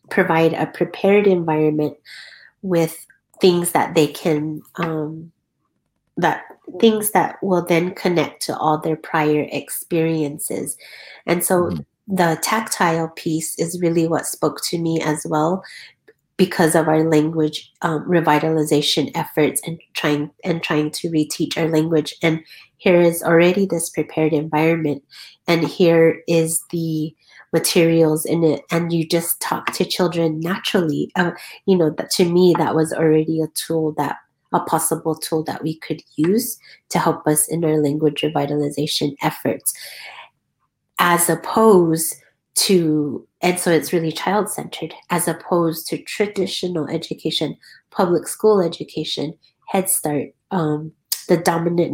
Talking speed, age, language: 135 wpm, 30-49, English